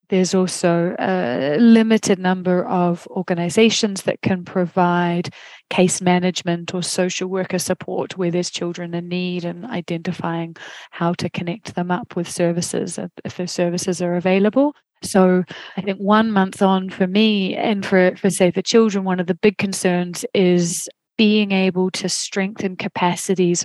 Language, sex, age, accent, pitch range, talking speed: English, female, 30-49, British, 175-195 Hz, 150 wpm